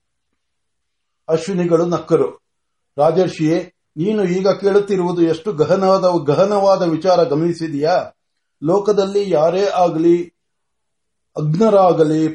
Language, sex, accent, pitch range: Marathi, male, native, 165-210 Hz